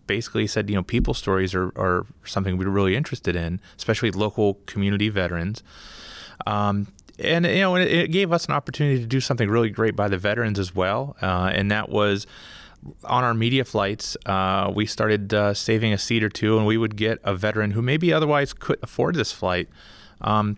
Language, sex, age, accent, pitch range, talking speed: English, male, 30-49, American, 95-115 Hz, 200 wpm